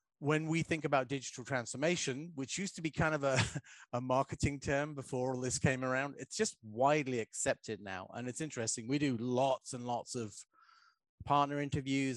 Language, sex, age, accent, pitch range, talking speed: English, male, 30-49, British, 120-145 Hz, 180 wpm